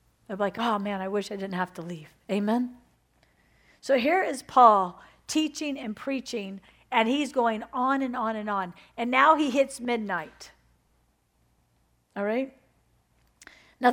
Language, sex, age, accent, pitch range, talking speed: English, female, 50-69, American, 215-310 Hz, 150 wpm